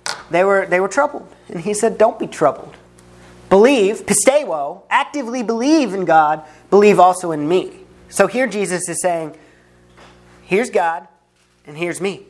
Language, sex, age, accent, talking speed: English, male, 30-49, American, 150 wpm